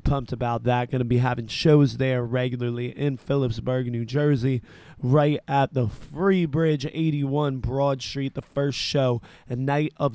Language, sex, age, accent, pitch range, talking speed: English, male, 20-39, American, 125-150 Hz, 165 wpm